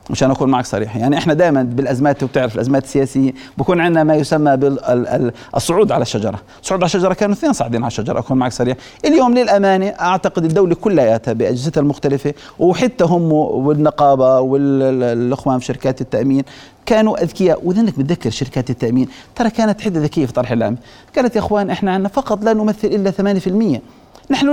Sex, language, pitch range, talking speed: male, Arabic, 135-225 Hz, 170 wpm